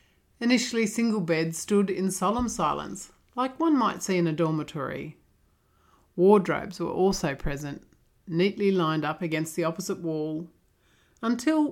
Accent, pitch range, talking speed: Australian, 160-205 Hz, 135 wpm